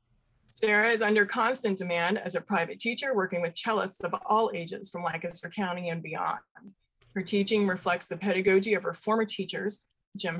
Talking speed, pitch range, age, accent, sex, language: 175 wpm, 175-215 Hz, 20-39, American, female, English